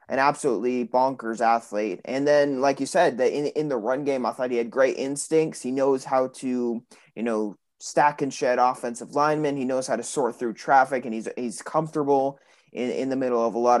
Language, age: English, 20-39